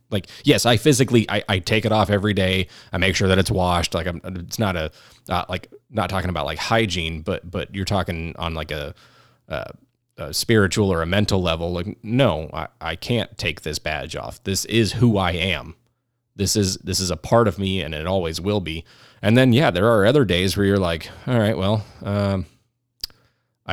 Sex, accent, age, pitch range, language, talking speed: male, American, 30-49, 90-115 Hz, English, 210 wpm